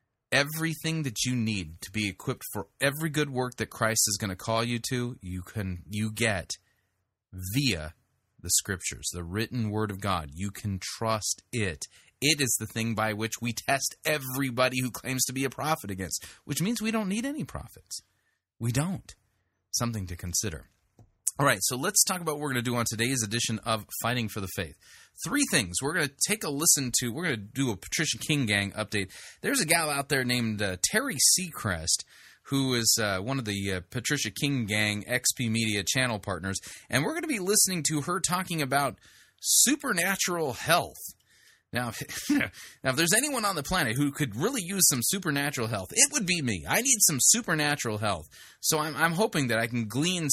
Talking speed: 200 wpm